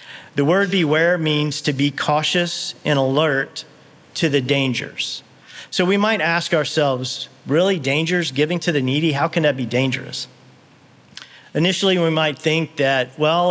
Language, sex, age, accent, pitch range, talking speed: English, male, 40-59, American, 135-160 Hz, 150 wpm